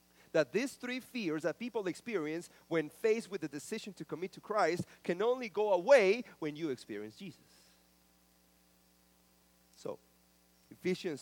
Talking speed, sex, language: 140 wpm, male, English